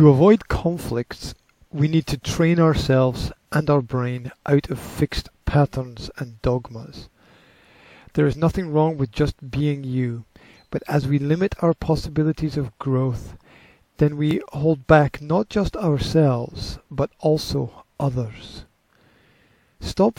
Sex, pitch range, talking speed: male, 130-160 Hz, 130 wpm